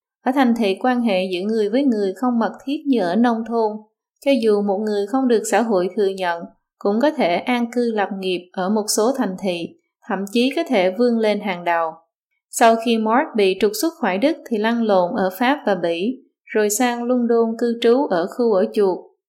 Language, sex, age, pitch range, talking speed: Vietnamese, female, 20-39, 195-250 Hz, 220 wpm